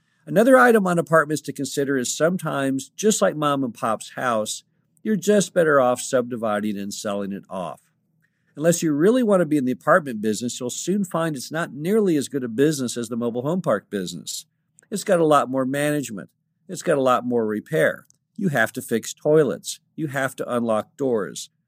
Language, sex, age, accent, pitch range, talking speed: English, male, 50-69, American, 120-165 Hz, 195 wpm